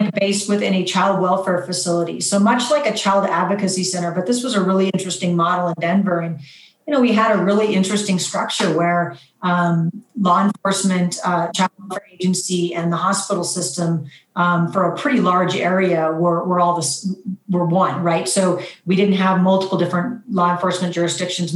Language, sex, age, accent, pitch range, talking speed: English, female, 40-59, American, 175-205 Hz, 180 wpm